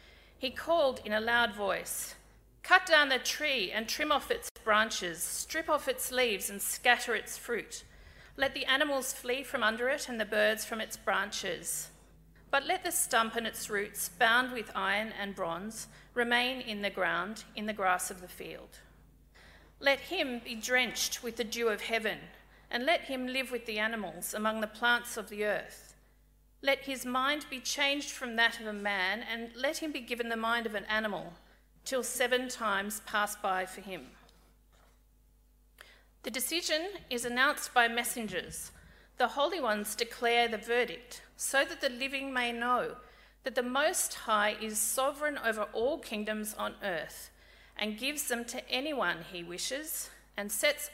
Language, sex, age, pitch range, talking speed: English, female, 40-59, 215-265 Hz, 170 wpm